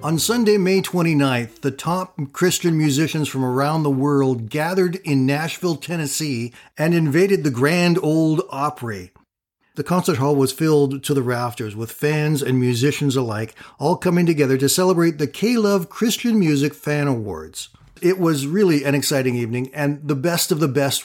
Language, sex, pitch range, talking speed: English, male, 130-170 Hz, 165 wpm